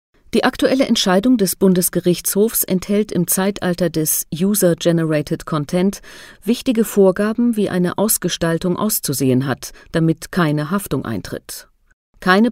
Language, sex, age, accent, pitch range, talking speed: German, female, 40-59, German, 155-205 Hz, 110 wpm